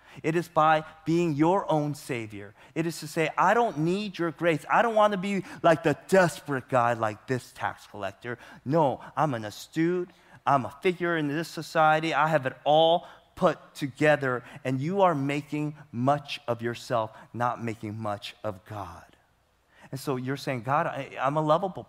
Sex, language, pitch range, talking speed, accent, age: male, English, 105-155 Hz, 180 wpm, American, 30-49